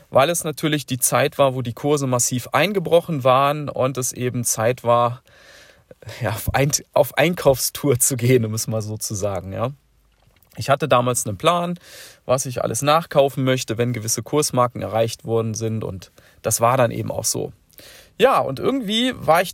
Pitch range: 120-170 Hz